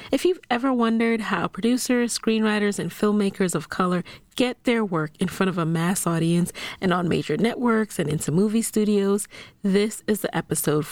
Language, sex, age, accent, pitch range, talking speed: English, female, 30-49, American, 165-220 Hz, 175 wpm